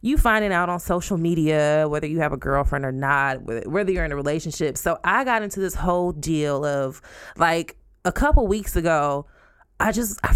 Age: 20-39